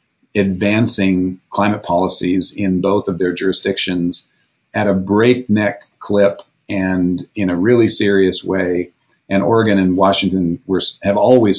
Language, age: English, 40-59